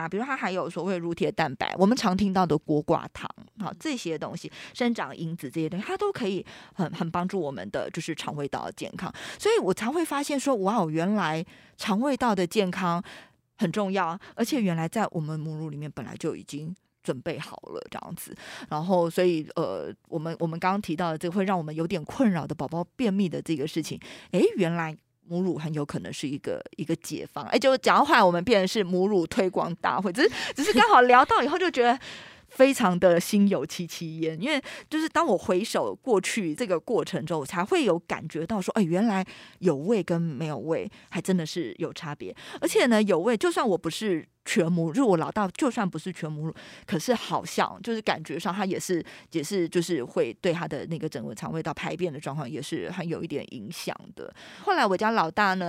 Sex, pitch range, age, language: female, 165-210 Hz, 20-39, Chinese